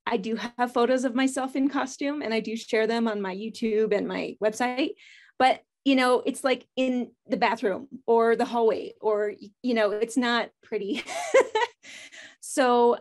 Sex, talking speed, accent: female, 170 wpm, American